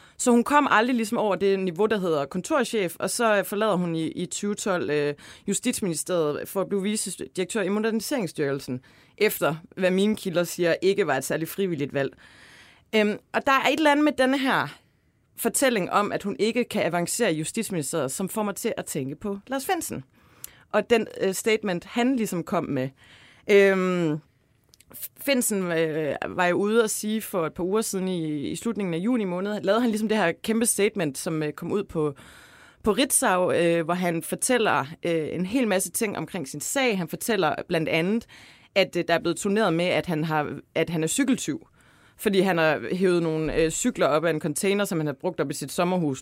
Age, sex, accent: 30-49, female, native